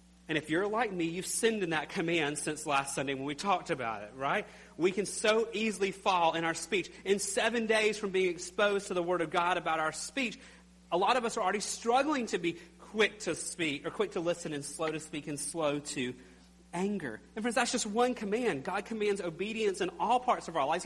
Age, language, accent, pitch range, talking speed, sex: 30-49, English, American, 165-215 Hz, 230 wpm, male